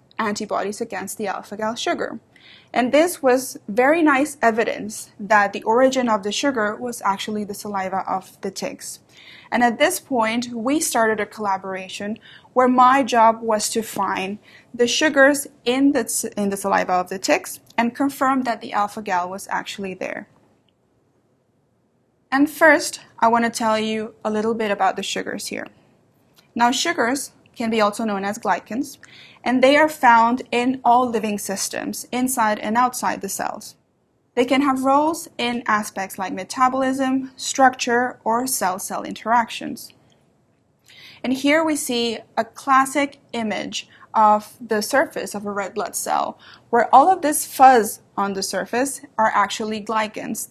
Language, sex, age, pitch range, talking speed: English, female, 20-39, 210-265 Hz, 150 wpm